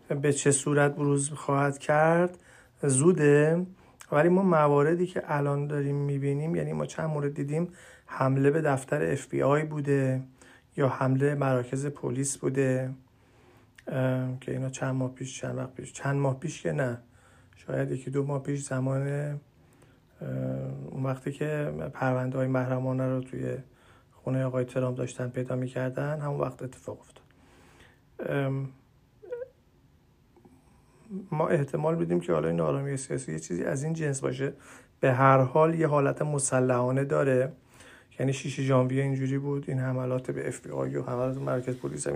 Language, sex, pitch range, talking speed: Persian, male, 125-145 Hz, 140 wpm